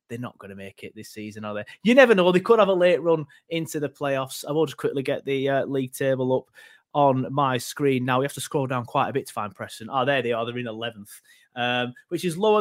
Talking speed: 275 wpm